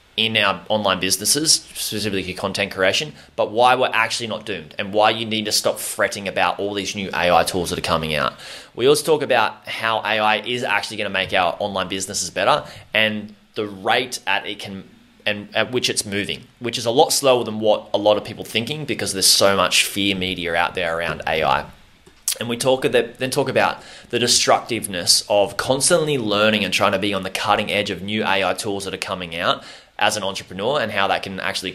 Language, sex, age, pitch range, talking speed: English, male, 20-39, 95-115 Hz, 215 wpm